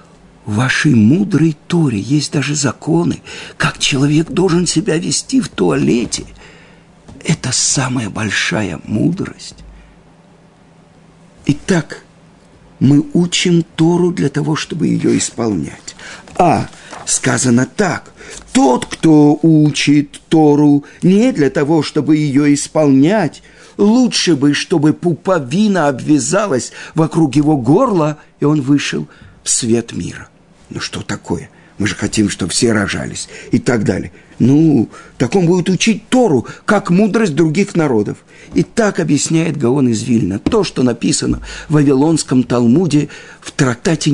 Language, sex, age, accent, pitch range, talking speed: Russian, male, 50-69, native, 140-175 Hz, 120 wpm